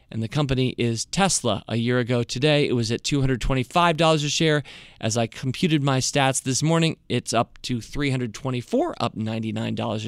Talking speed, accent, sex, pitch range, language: 165 wpm, American, male, 125-165 Hz, English